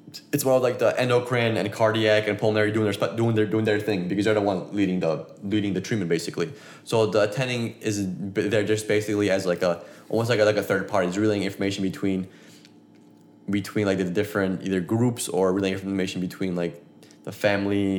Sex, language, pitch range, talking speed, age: male, English, 95-115 Hz, 205 wpm, 20-39